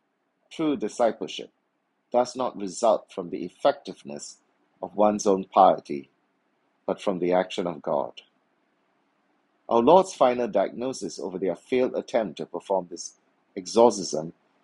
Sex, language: male, English